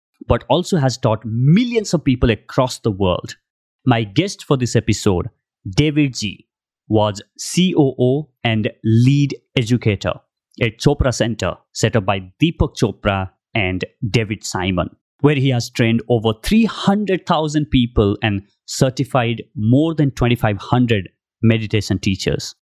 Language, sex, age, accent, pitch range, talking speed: English, male, 30-49, Indian, 110-140 Hz, 125 wpm